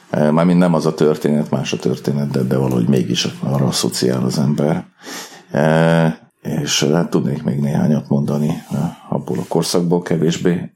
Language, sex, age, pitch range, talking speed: Hungarian, male, 40-59, 75-85 Hz, 150 wpm